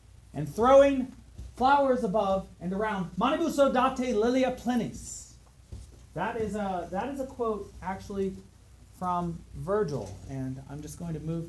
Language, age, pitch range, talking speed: English, 30-49, 155-230 Hz, 130 wpm